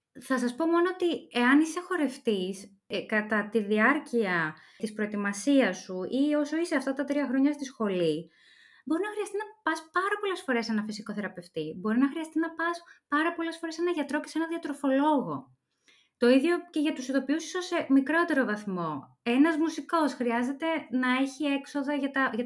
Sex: female